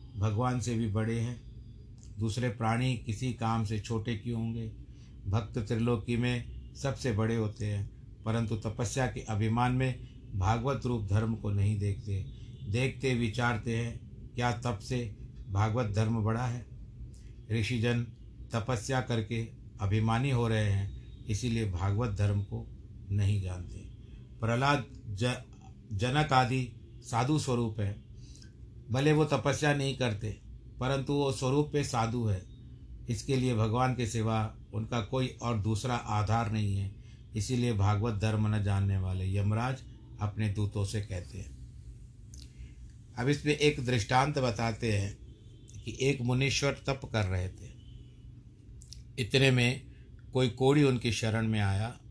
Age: 60-79